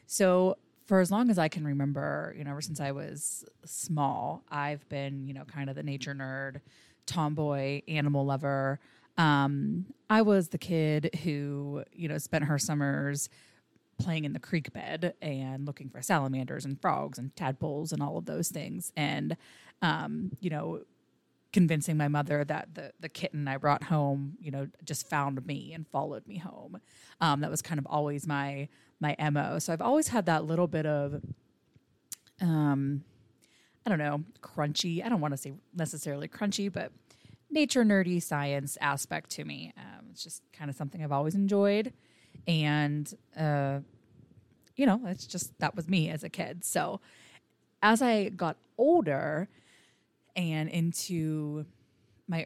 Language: English